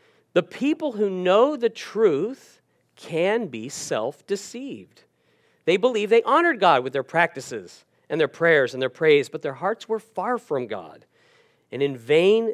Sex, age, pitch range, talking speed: male, 40-59, 130-200 Hz, 160 wpm